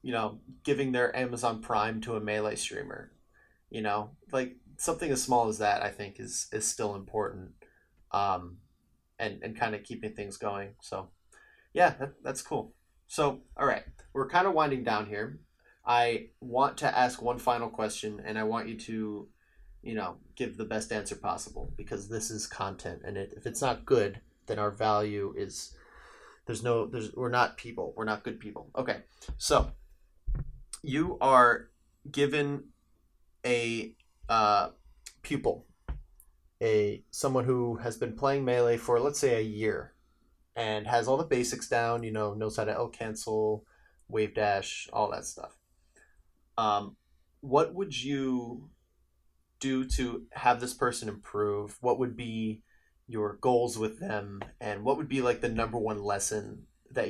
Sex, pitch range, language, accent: male, 105-120 Hz, English, American